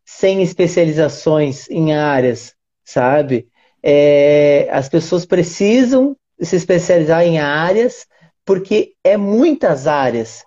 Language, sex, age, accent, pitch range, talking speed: Portuguese, male, 30-49, Brazilian, 155-185 Hz, 90 wpm